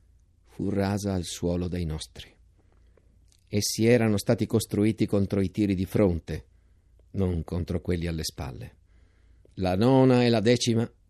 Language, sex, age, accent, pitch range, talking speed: Italian, male, 50-69, native, 90-105 Hz, 135 wpm